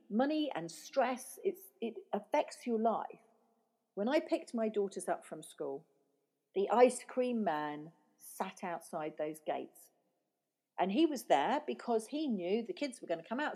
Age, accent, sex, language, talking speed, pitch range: 40-59, British, female, English, 165 wpm, 175-245 Hz